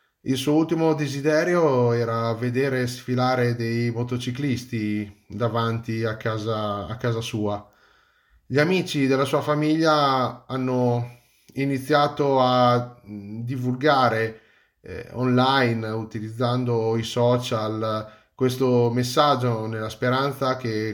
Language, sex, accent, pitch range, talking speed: Italian, male, native, 105-125 Hz, 95 wpm